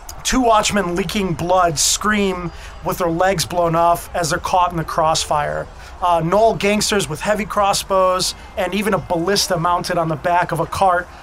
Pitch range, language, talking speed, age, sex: 165-205 Hz, English, 175 wpm, 30-49, male